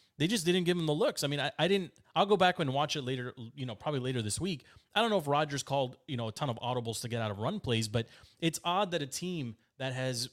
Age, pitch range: 30-49, 125-180 Hz